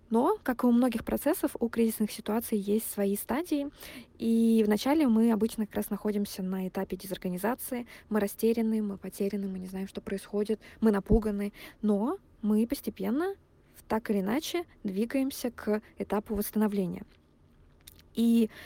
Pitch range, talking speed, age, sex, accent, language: 200-230 Hz, 140 wpm, 20-39, female, native, Russian